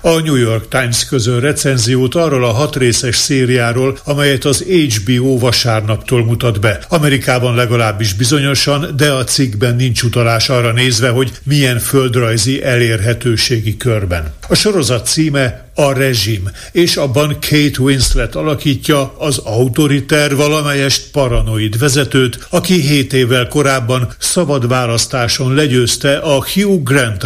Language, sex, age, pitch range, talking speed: Hungarian, male, 60-79, 115-140 Hz, 125 wpm